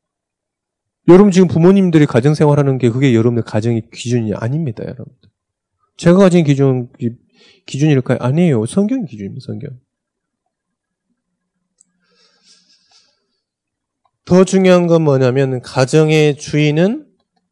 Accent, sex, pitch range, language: native, male, 110-165 Hz, Korean